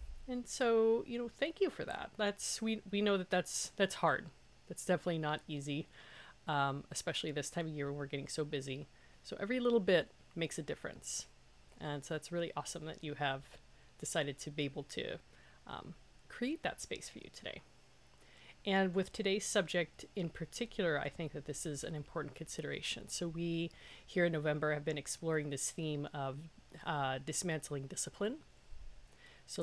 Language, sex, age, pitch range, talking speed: English, female, 30-49, 150-195 Hz, 175 wpm